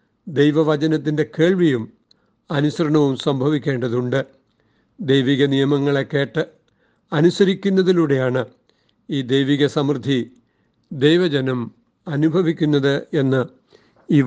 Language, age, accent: Malayalam, 60-79, native